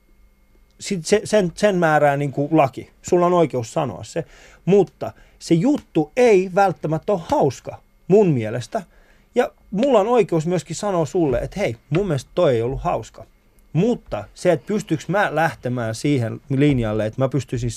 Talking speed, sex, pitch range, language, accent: 160 wpm, male, 120-165 Hz, Finnish, native